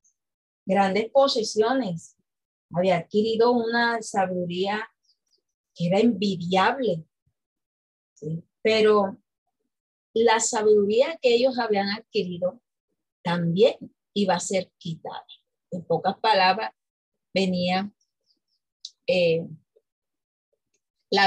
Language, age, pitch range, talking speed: Spanish, 30-49, 185-245 Hz, 75 wpm